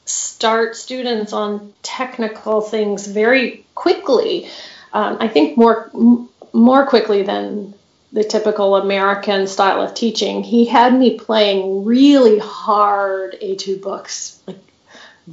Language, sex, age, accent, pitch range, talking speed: English, female, 30-49, American, 200-235 Hz, 115 wpm